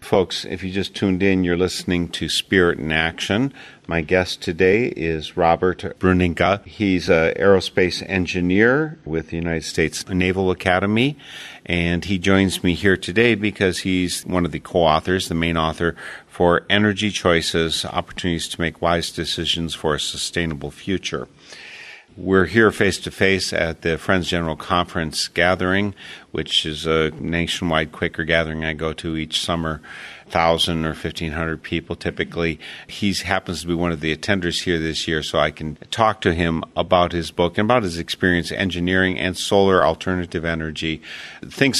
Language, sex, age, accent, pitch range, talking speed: English, male, 50-69, American, 80-95 Hz, 160 wpm